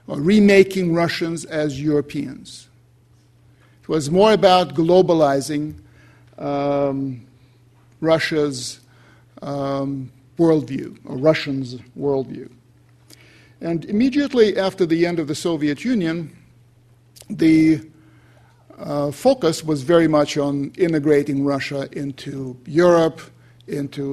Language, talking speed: English, 90 wpm